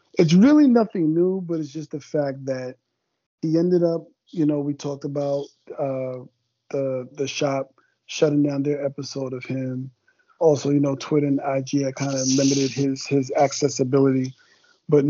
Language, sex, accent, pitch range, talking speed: English, male, American, 135-155 Hz, 165 wpm